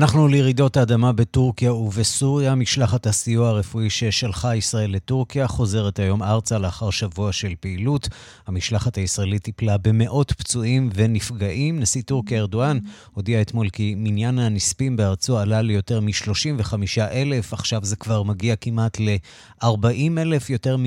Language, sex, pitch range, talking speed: Hebrew, male, 105-125 Hz, 125 wpm